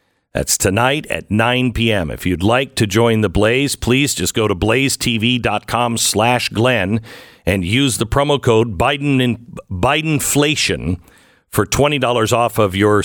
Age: 50-69